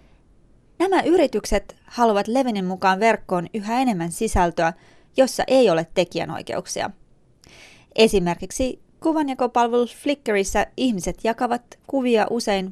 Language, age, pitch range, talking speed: Finnish, 20-39, 180-235 Hz, 95 wpm